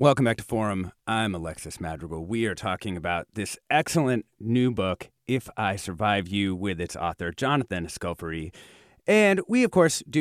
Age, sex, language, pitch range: 30-49, male, English, 95-140 Hz